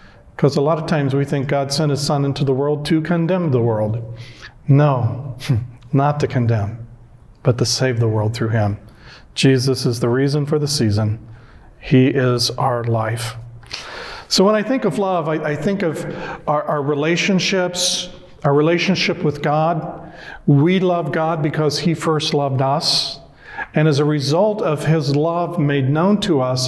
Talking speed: 170 wpm